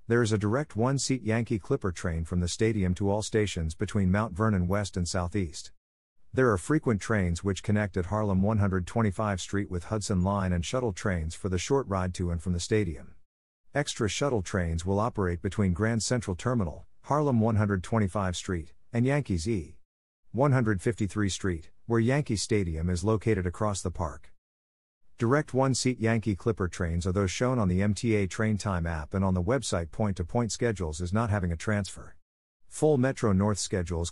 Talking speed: 175 wpm